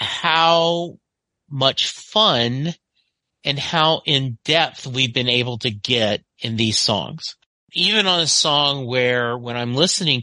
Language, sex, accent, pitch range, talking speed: English, male, American, 120-165 Hz, 130 wpm